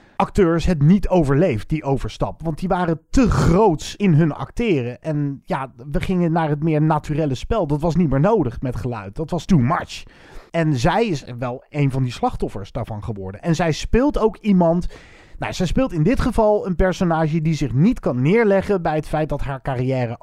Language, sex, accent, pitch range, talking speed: Dutch, male, Dutch, 140-180 Hz, 200 wpm